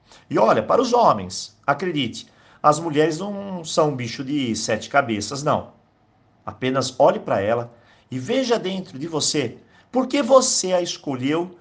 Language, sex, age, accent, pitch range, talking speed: Portuguese, male, 50-69, Brazilian, 110-165 Hz, 155 wpm